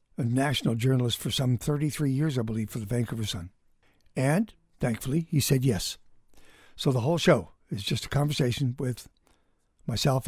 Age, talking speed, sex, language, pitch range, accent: 60-79, 165 wpm, male, English, 120-150 Hz, American